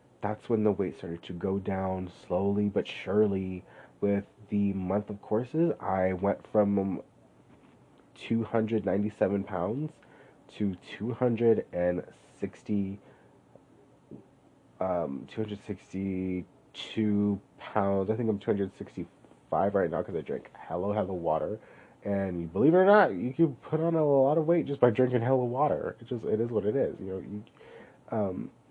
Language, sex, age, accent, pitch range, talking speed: English, male, 30-49, American, 95-115 Hz, 140 wpm